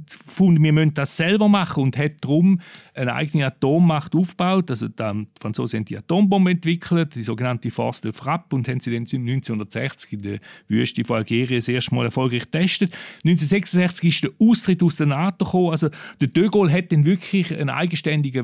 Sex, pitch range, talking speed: male, 140-185 Hz, 185 wpm